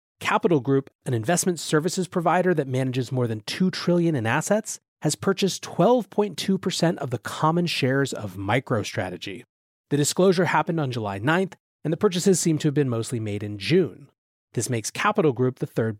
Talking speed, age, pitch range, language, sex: 175 wpm, 30-49, 120-185 Hz, English, male